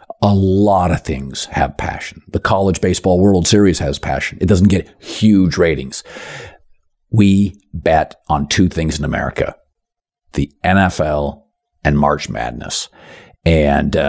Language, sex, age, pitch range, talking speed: English, male, 50-69, 80-105 Hz, 130 wpm